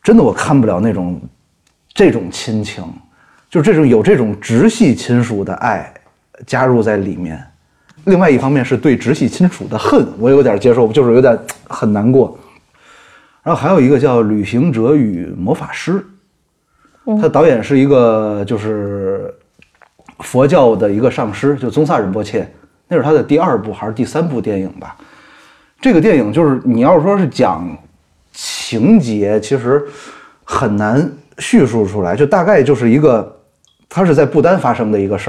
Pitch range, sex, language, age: 105-145 Hz, male, Chinese, 30-49